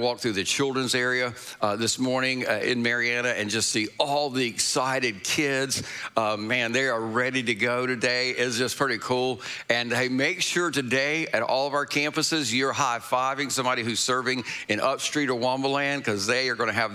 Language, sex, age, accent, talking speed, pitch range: English, male, 50-69, American, 195 wpm, 110-140 Hz